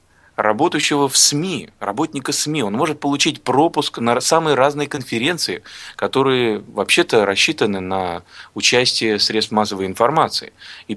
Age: 20-39